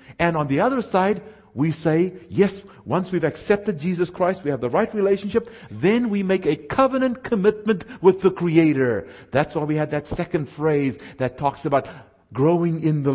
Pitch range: 140-190 Hz